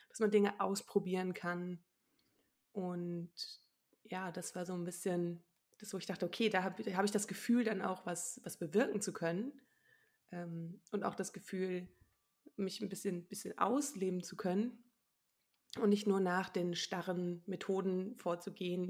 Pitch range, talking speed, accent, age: 175-215 Hz, 160 wpm, German, 20-39